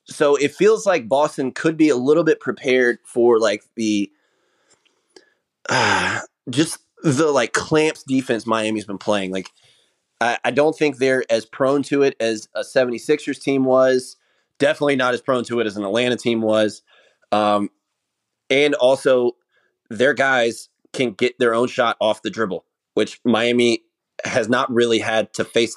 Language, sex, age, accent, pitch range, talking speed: English, male, 20-39, American, 110-140 Hz, 170 wpm